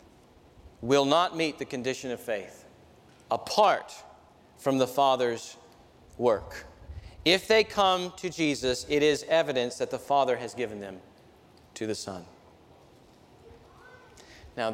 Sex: male